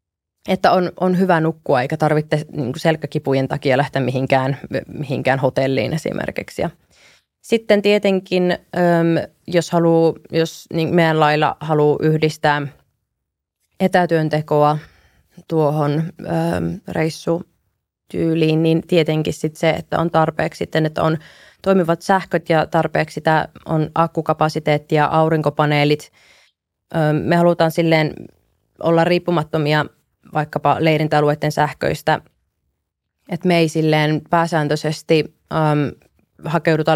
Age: 20-39